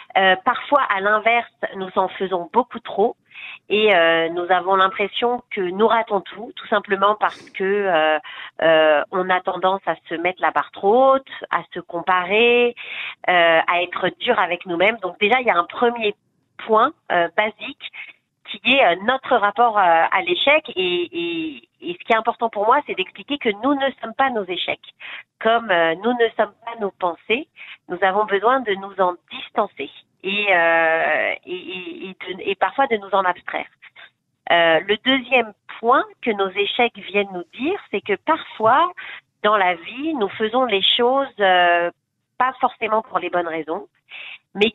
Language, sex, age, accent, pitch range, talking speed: French, female, 40-59, French, 180-250 Hz, 175 wpm